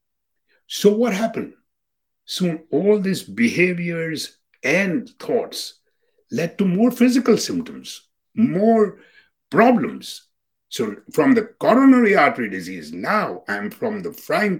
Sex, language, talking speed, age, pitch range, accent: male, English, 110 wpm, 60-79, 165-250 Hz, Indian